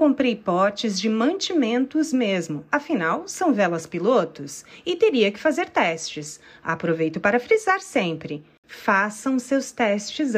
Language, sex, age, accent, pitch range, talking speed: Portuguese, female, 30-49, Brazilian, 165-270 Hz, 120 wpm